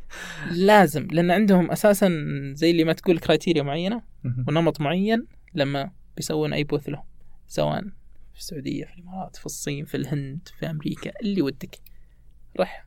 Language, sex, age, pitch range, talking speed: Arabic, male, 20-39, 140-190 Hz, 145 wpm